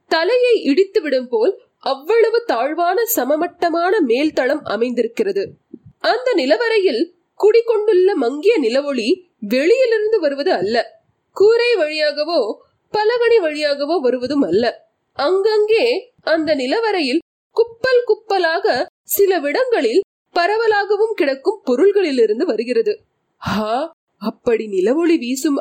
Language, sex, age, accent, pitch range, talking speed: Tamil, female, 30-49, native, 270-410 Hz, 80 wpm